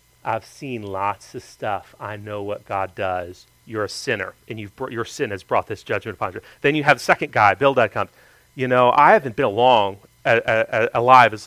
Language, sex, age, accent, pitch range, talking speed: English, male, 40-59, American, 110-145 Hz, 225 wpm